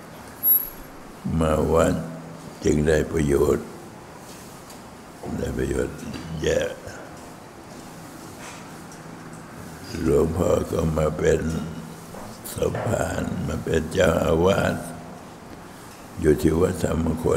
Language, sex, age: Thai, male, 60-79